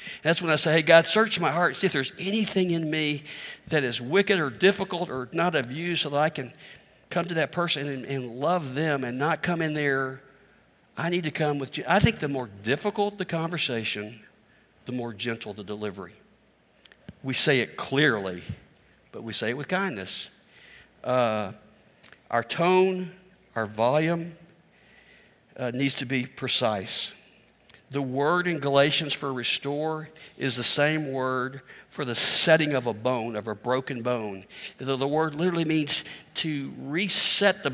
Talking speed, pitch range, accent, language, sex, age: 170 wpm, 130-175 Hz, American, English, male, 60-79